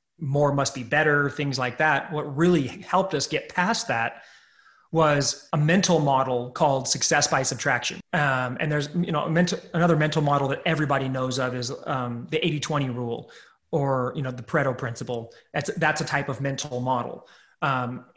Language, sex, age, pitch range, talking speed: English, male, 30-49, 130-160 Hz, 180 wpm